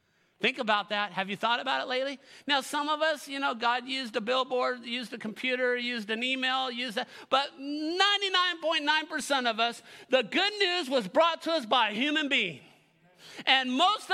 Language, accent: English, American